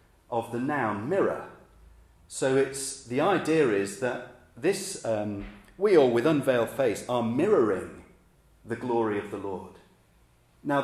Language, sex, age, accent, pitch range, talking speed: English, male, 40-59, British, 95-135 Hz, 140 wpm